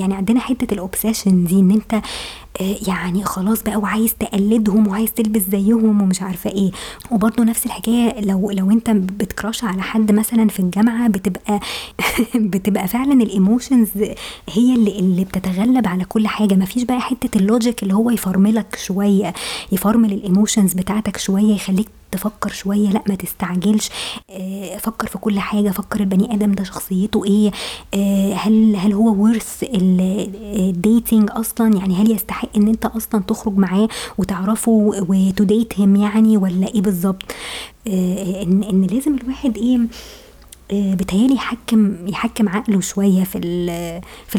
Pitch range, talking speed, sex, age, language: 195-225 Hz, 135 wpm, male, 20-39, Arabic